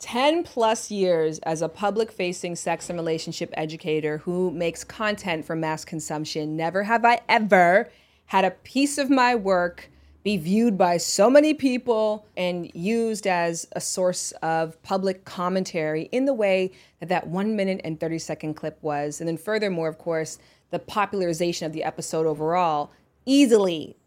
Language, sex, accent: English, female, American